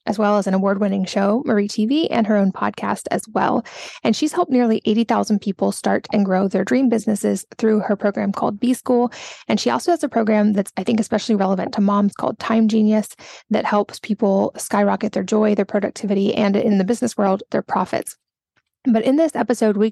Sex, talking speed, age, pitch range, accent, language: female, 200 wpm, 20-39, 200-230 Hz, American, English